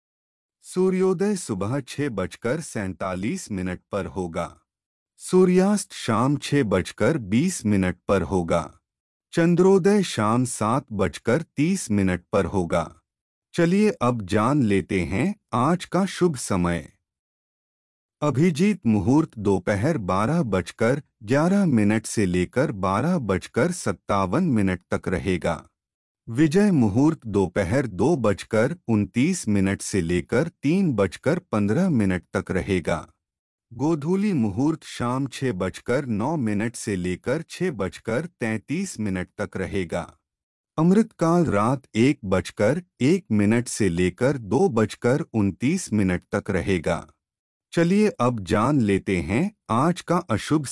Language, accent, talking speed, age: Hindi, native, 120 wpm, 30-49